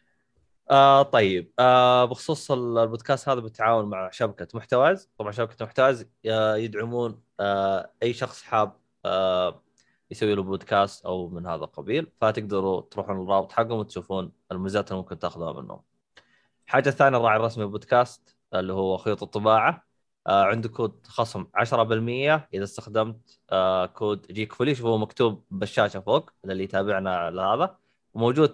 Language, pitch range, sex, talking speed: Arabic, 105-125 Hz, male, 135 wpm